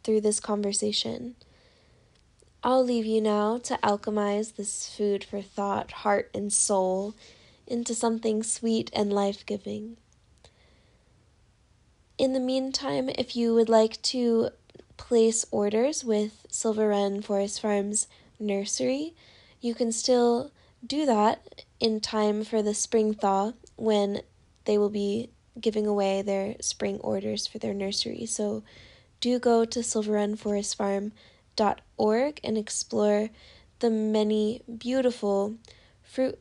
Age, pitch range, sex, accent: 10-29, 210-235 Hz, female, American